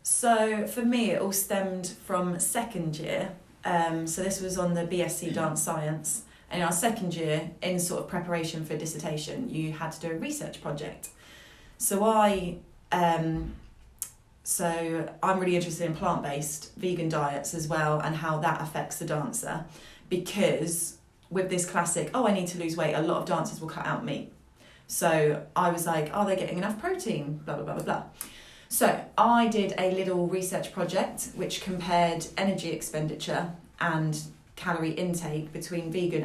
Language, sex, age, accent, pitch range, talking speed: English, female, 30-49, British, 160-185 Hz, 175 wpm